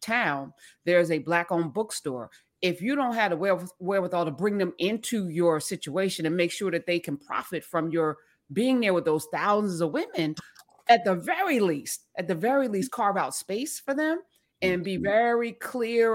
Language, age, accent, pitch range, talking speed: English, 30-49, American, 160-200 Hz, 190 wpm